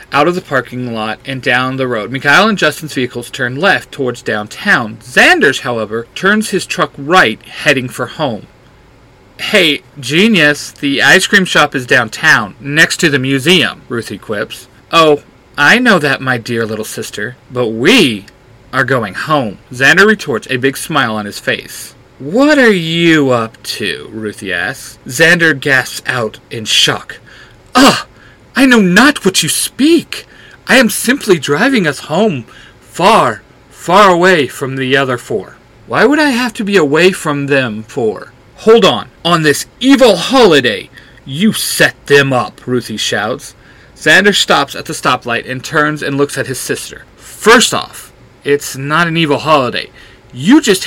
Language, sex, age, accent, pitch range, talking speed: English, male, 40-59, American, 125-185 Hz, 160 wpm